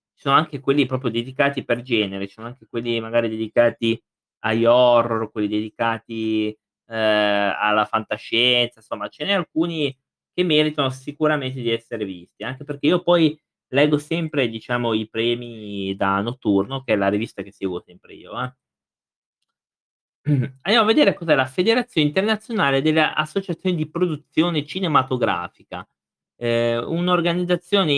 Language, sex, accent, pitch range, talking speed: Italian, male, native, 115-155 Hz, 140 wpm